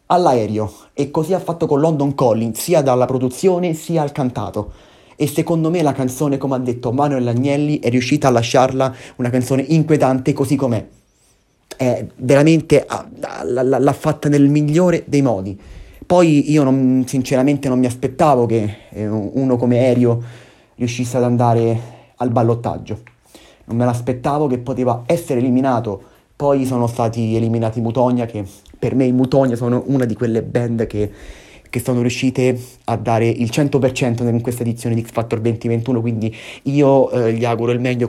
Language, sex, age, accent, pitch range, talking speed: Italian, male, 30-49, native, 115-135 Hz, 160 wpm